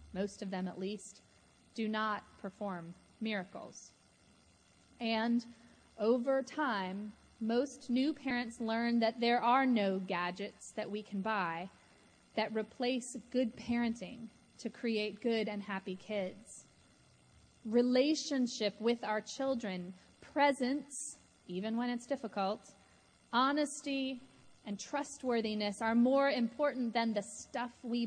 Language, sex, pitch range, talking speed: English, female, 205-255 Hz, 115 wpm